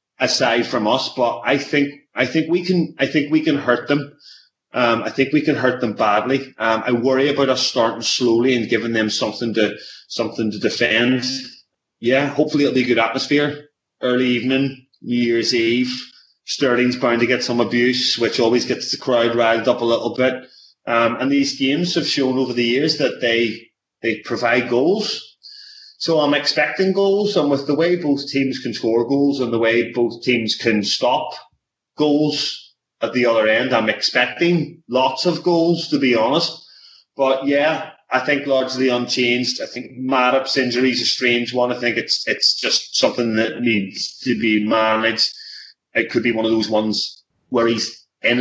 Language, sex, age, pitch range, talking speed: English, male, 30-49, 115-140 Hz, 185 wpm